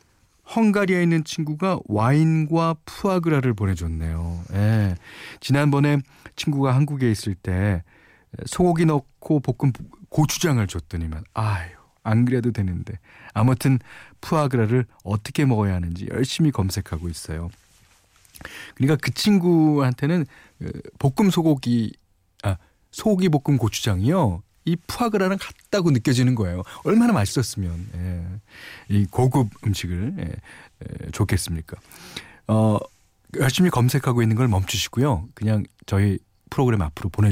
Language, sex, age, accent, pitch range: Korean, male, 40-59, native, 100-145 Hz